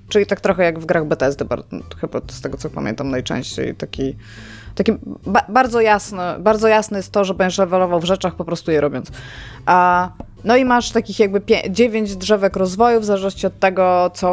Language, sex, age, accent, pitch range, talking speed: Polish, female, 20-39, native, 165-205 Hz, 195 wpm